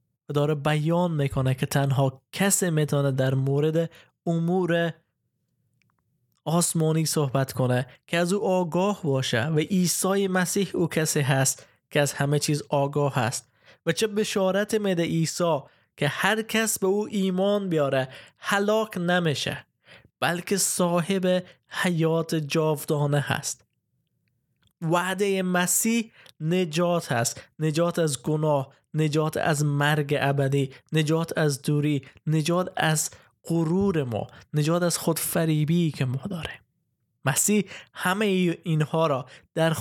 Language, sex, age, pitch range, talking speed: Persian, male, 20-39, 140-180 Hz, 120 wpm